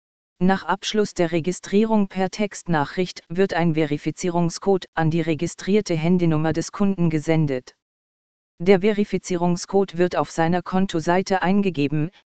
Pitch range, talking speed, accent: 170-195 Hz, 110 wpm, German